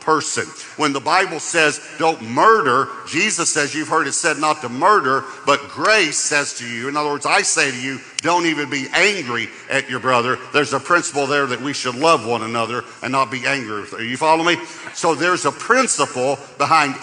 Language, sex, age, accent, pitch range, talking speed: English, male, 50-69, American, 130-175 Hz, 200 wpm